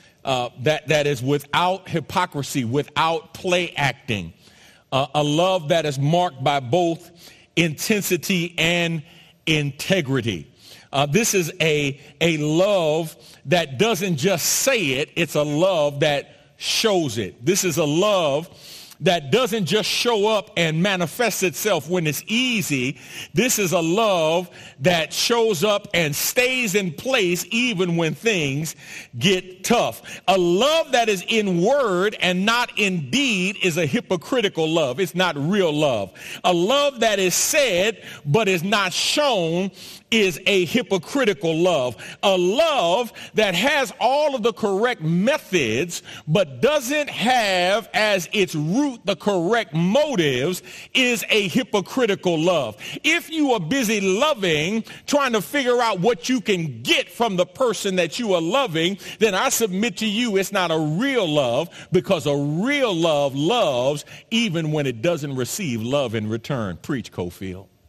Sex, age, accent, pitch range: male, 40-59, American, 155-215 Hz